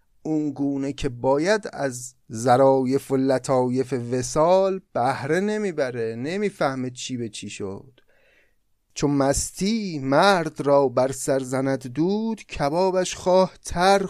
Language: Persian